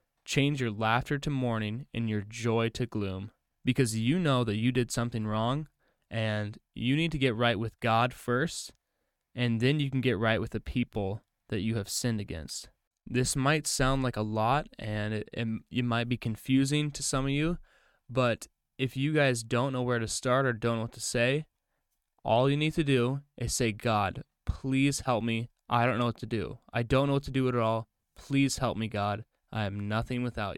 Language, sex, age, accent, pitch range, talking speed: English, male, 20-39, American, 110-130 Hz, 210 wpm